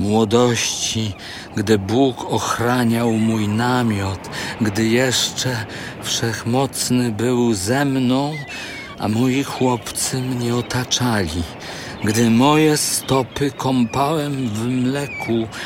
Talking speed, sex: 90 wpm, male